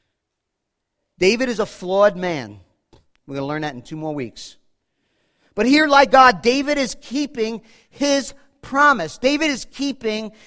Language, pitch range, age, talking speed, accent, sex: English, 185-255 Hz, 50-69, 150 wpm, American, male